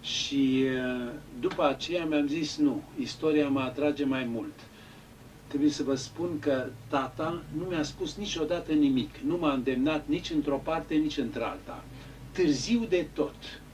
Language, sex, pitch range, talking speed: Romanian, male, 130-155 Hz, 145 wpm